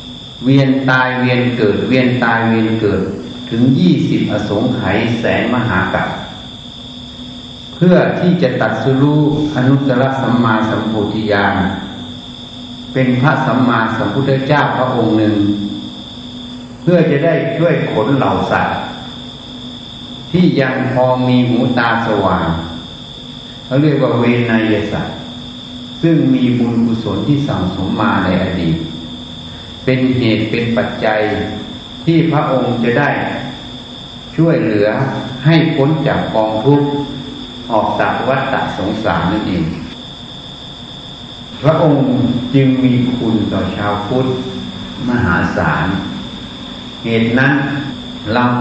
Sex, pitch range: male, 110-135 Hz